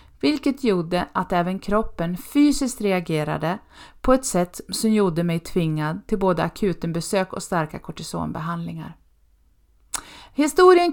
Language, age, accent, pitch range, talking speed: Swedish, 30-49, native, 170-225 Hz, 120 wpm